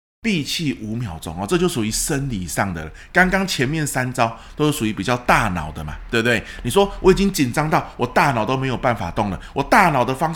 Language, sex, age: Chinese, male, 20-39